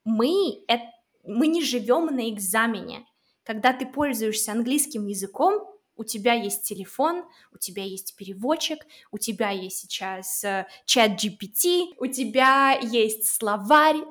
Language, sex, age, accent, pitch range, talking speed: Russian, female, 20-39, native, 220-295 Hz, 130 wpm